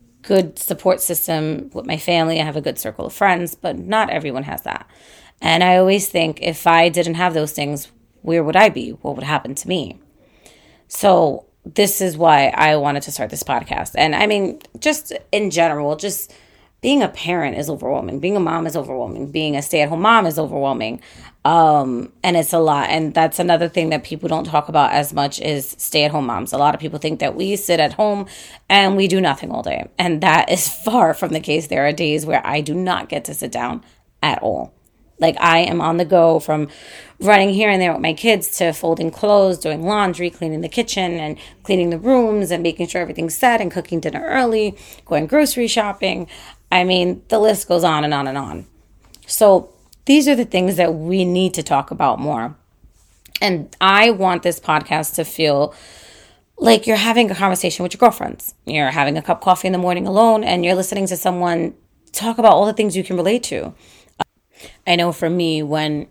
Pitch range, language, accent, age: 155-195 Hz, English, American, 30-49